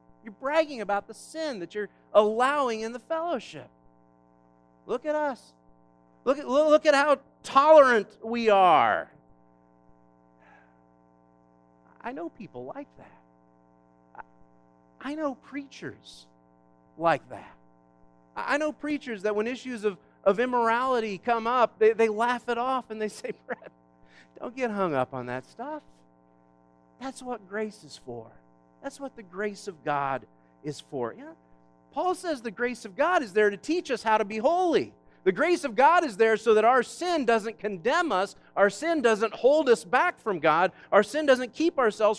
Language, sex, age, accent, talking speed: English, male, 40-59, American, 160 wpm